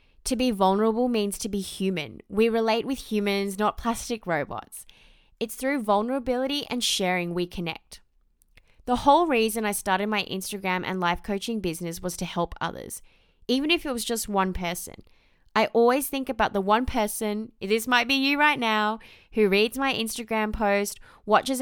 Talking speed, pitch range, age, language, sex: 170 wpm, 190-230 Hz, 20-39, English, female